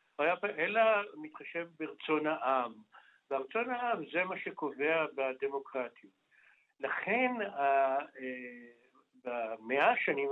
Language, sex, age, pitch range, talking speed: Hebrew, male, 60-79, 140-180 Hz, 75 wpm